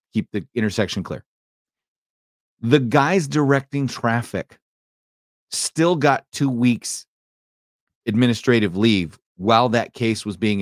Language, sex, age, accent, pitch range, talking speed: English, male, 30-49, American, 90-125 Hz, 105 wpm